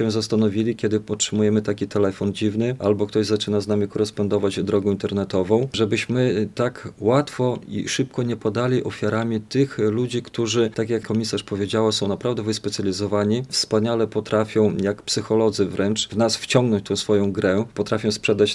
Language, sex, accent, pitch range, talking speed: Polish, male, native, 105-115 Hz, 145 wpm